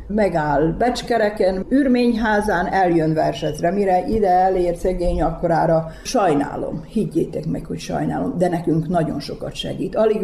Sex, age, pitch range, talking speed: female, 50-69, 155-200 Hz, 125 wpm